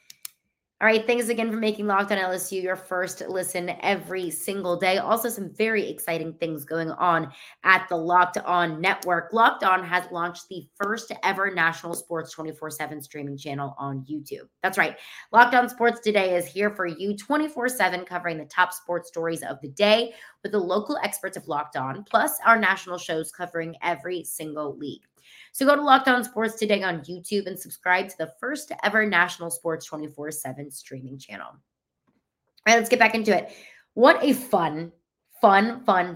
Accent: American